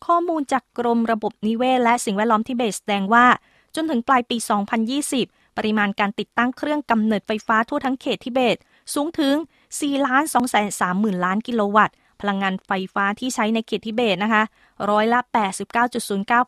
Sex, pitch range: female, 205-250 Hz